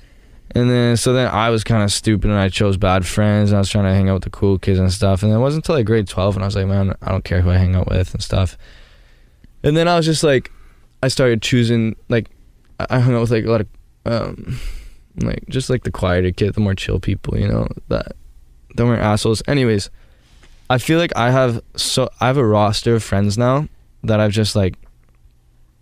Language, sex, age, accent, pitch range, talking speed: English, male, 10-29, American, 90-110 Hz, 235 wpm